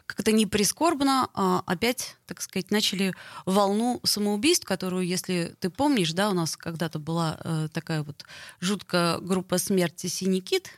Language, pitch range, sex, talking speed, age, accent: Russian, 180-235 Hz, female, 135 wpm, 20-39, native